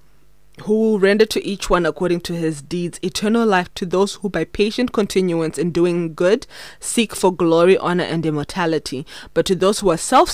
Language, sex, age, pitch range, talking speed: English, female, 20-39, 170-210 Hz, 190 wpm